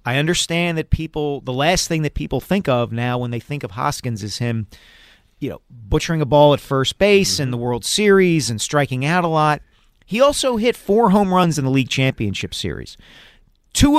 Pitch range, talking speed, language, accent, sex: 120-165 Hz, 205 wpm, English, American, male